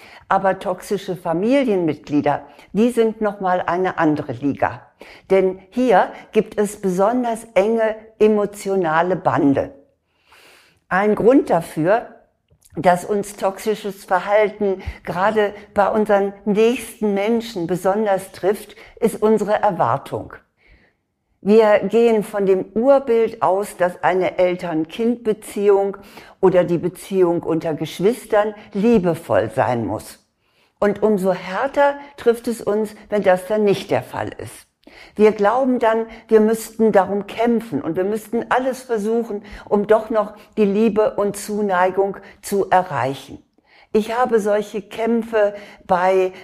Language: German